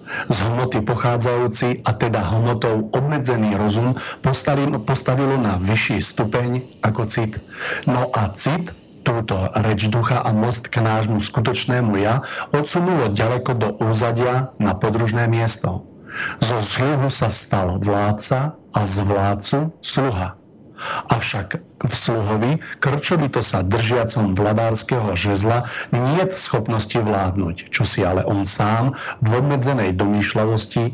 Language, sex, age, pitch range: Slovak, male, 50-69, 105-125 Hz